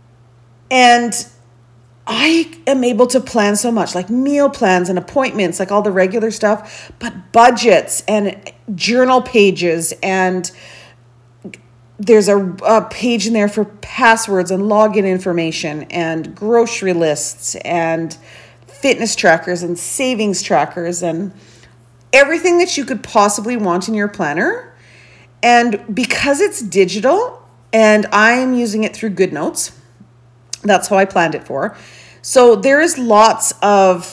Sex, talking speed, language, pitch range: female, 130 wpm, English, 170-235 Hz